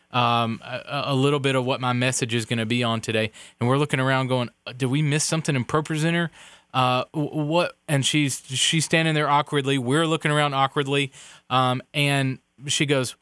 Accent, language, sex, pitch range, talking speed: American, English, male, 125-150 Hz, 195 wpm